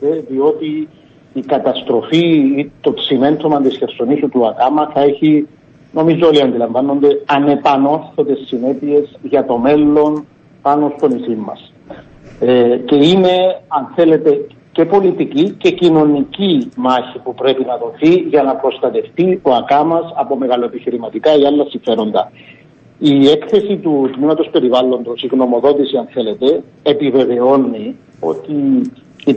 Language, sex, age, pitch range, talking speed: Greek, male, 50-69, 130-165 Hz, 120 wpm